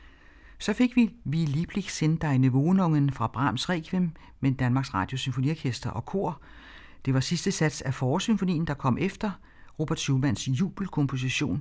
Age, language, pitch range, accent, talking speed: 60-79, Danish, 120-160 Hz, native, 155 wpm